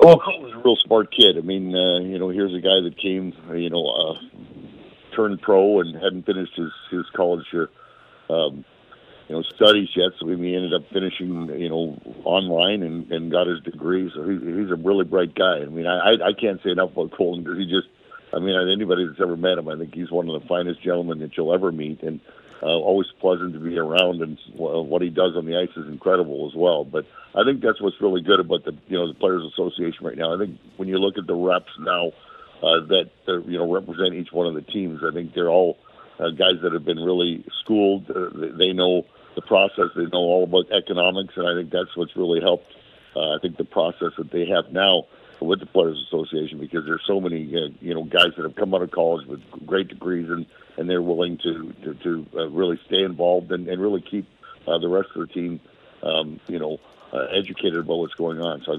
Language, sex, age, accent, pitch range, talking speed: English, male, 50-69, American, 85-90 Hz, 235 wpm